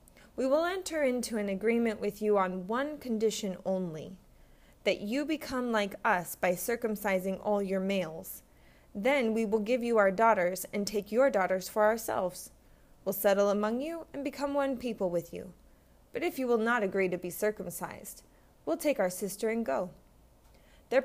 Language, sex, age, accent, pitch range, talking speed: English, female, 20-39, American, 195-270 Hz, 175 wpm